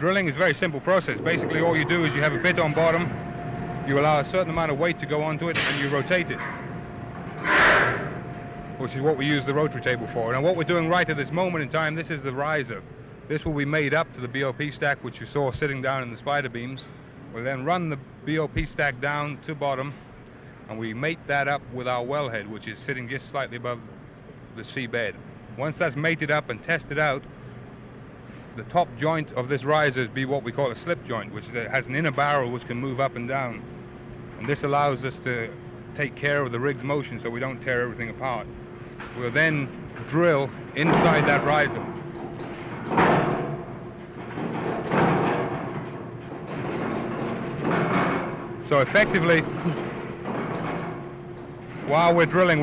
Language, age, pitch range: English, 30-49, 130-160 Hz